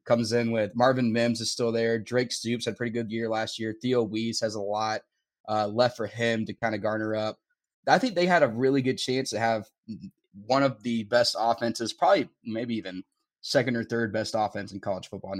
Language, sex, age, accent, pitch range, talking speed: English, male, 20-39, American, 110-135 Hz, 220 wpm